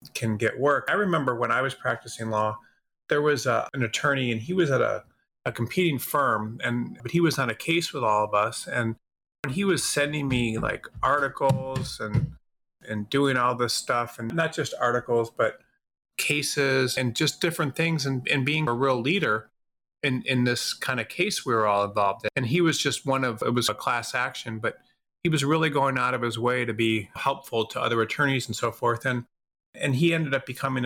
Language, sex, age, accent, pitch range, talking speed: English, male, 30-49, American, 115-140 Hz, 215 wpm